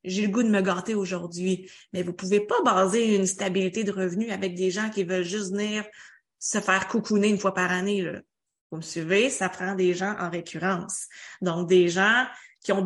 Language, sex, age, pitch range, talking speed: French, female, 20-39, 185-215 Hz, 215 wpm